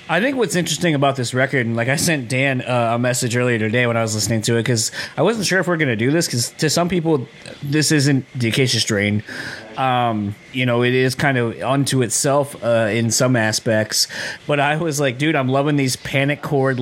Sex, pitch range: male, 115-140 Hz